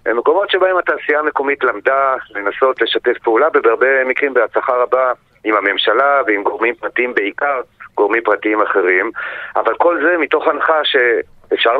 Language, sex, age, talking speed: Hebrew, male, 40-59, 135 wpm